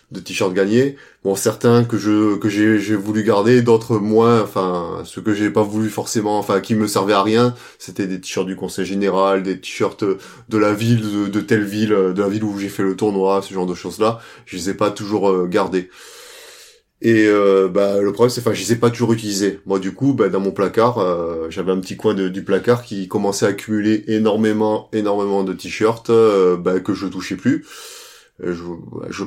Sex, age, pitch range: male, 20-39, 95-115 Hz